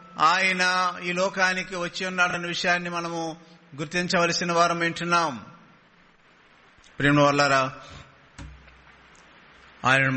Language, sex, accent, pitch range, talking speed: English, male, Indian, 160-185 Hz, 70 wpm